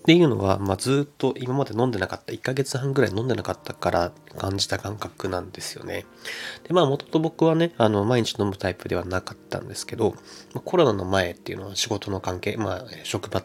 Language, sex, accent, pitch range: Japanese, male, native, 95-135 Hz